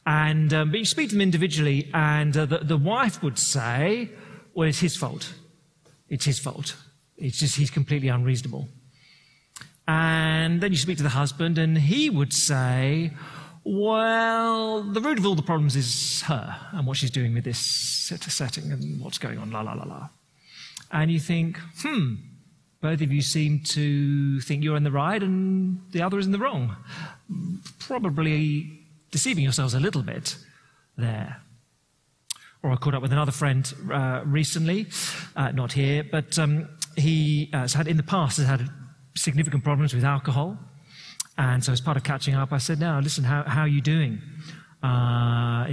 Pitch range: 135-165 Hz